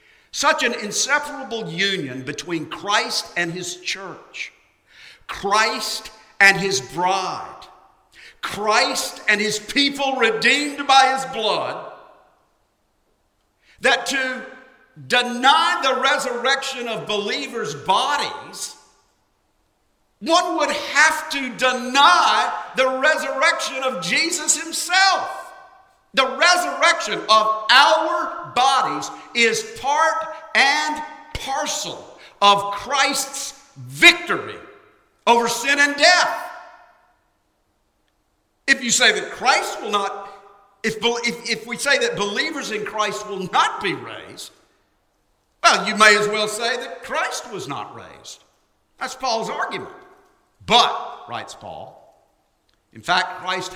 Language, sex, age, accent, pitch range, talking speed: English, male, 50-69, American, 215-315 Hz, 105 wpm